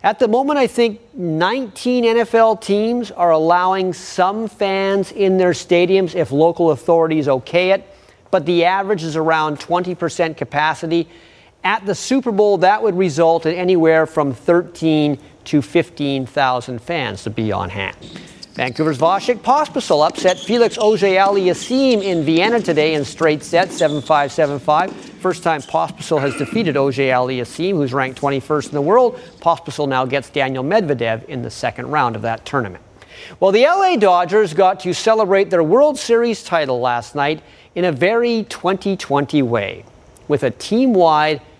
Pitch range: 150-200 Hz